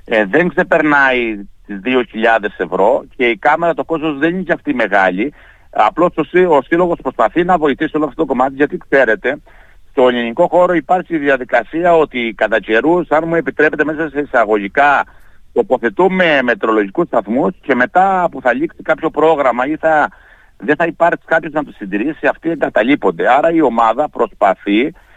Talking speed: 160 wpm